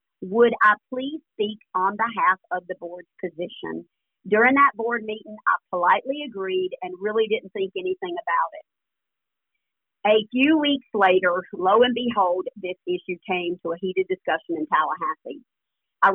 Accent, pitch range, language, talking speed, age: American, 190-245 Hz, English, 150 wpm, 50-69